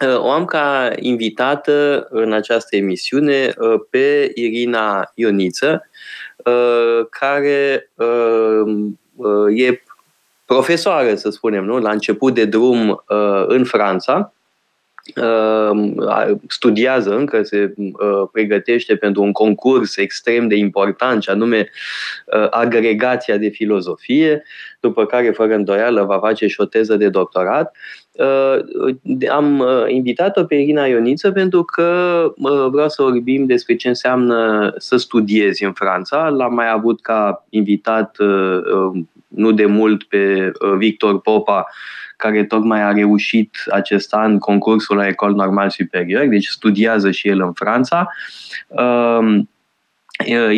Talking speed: 115 wpm